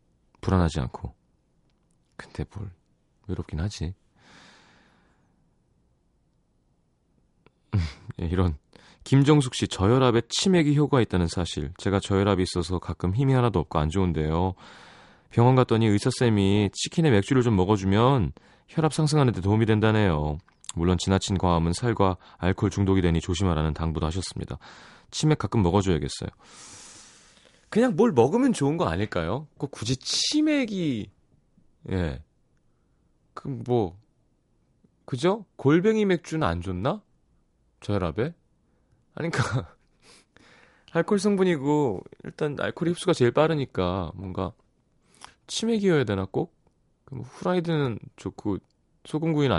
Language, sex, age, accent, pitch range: Korean, male, 30-49, native, 90-145 Hz